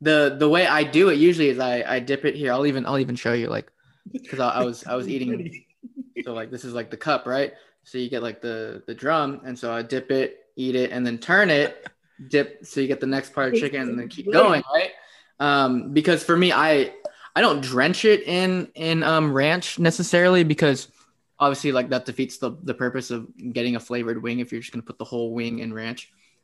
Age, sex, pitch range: 20-39, male, 120-150 Hz